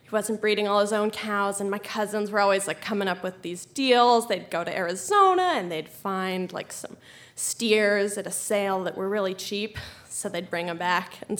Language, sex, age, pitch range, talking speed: English, female, 20-39, 195-230 Hz, 210 wpm